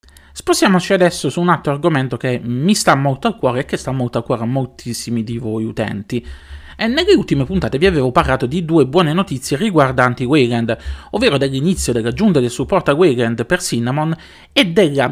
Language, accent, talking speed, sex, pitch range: Italian, native, 185 wpm, male, 120-180 Hz